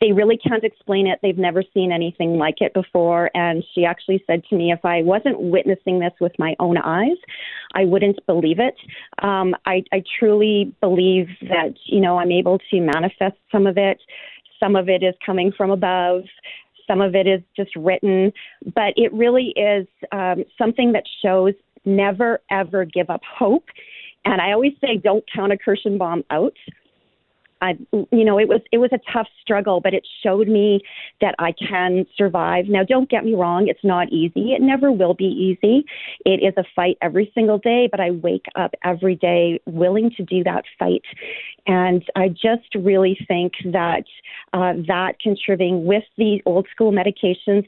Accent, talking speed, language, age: American, 180 wpm, English, 40-59